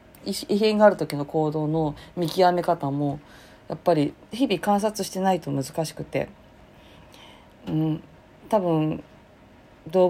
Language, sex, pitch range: Japanese, female, 145-185 Hz